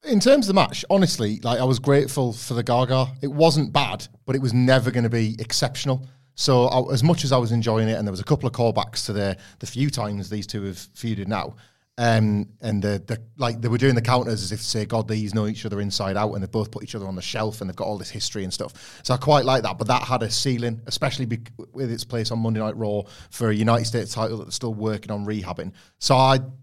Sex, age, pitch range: male, 30-49, 110-130 Hz